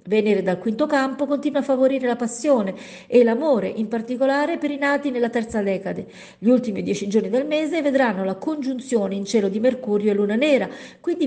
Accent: native